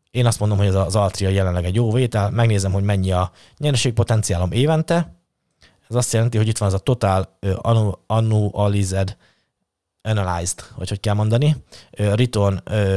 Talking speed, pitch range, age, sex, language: 155 wpm, 100-125 Hz, 20-39, male, Hungarian